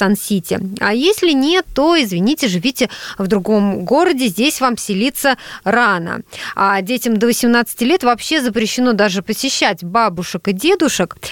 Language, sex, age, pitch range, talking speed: Russian, female, 20-39, 200-280 Hz, 140 wpm